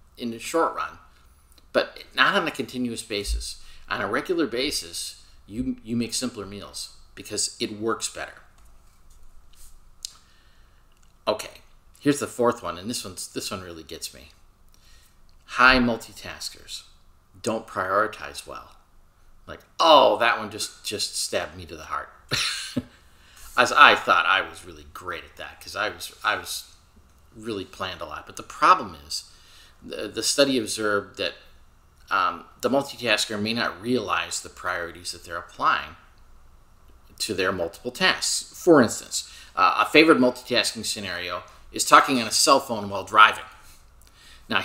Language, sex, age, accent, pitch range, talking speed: English, male, 40-59, American, 85-120 Hz, 145 wpm